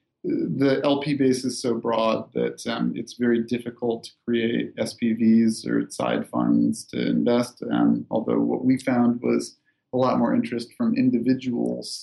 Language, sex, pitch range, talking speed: English, male, 120-145 Hz, 155 wpm